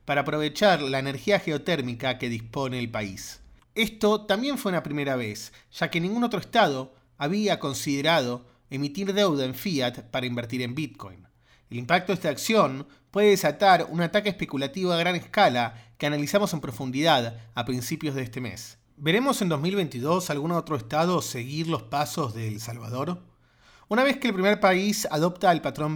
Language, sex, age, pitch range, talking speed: Spanish, male, 30-49, 130-190 Hz, 170 wpm